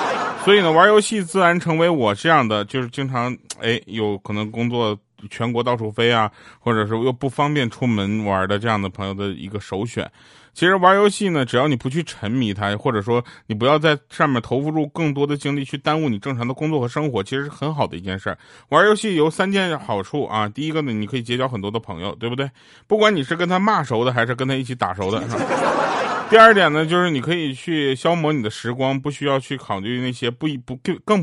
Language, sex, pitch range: Chinese, male, 110-155 Hz